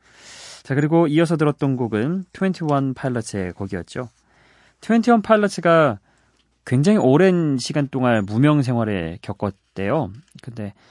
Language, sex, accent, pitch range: Korean, male, native, 100-140 Hz